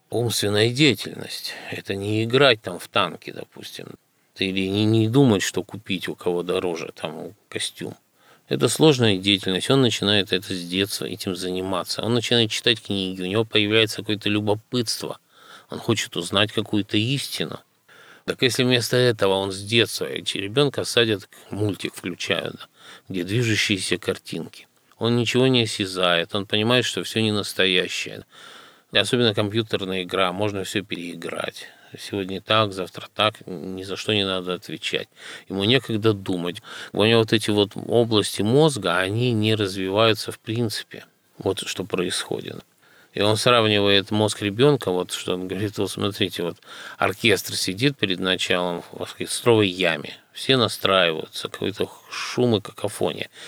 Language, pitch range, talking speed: Russian, 95-115 Hz, 145 wpm